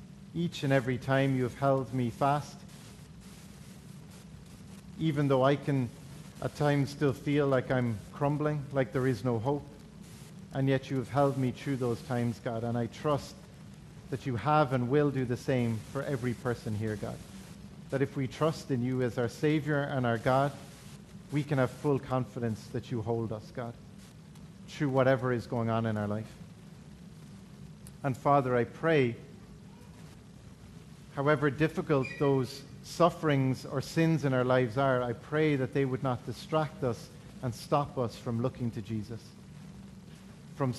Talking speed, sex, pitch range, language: 165 wpm, male, 125-150 Hz, English